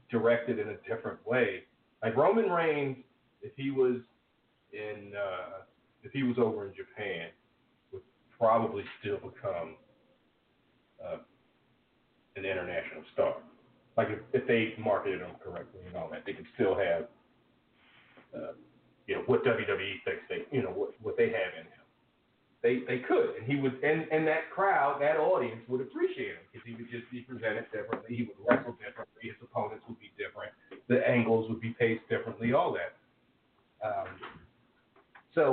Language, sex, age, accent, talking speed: English, male, 40-59, American, 160 wpm